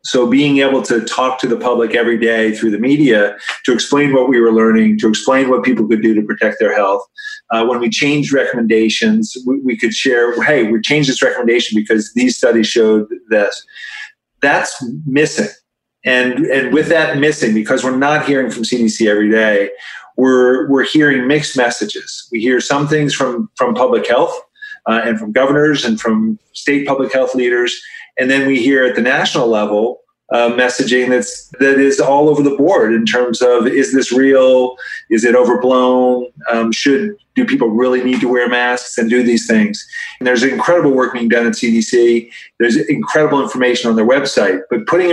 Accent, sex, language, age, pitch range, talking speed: American, male, English, 40-59, 115-145 Hz, 185 wpm